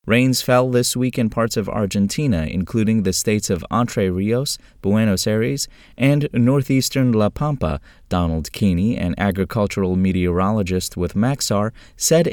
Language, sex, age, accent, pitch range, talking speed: English, male, 30-49, American, 95-120 Hz, 135 wpm